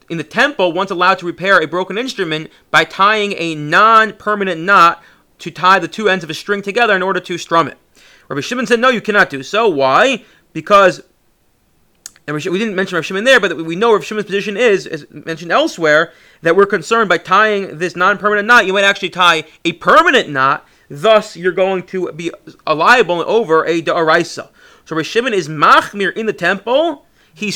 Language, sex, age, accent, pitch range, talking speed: English, male, 30-49, American, 165-210 Hz, 195 wpm